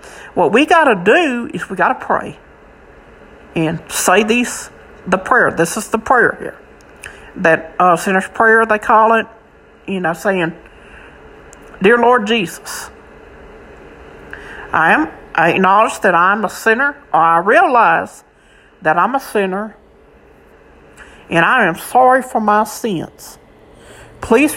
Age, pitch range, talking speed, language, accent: 60-79, 180-225 Hz, 130 wpm, English, American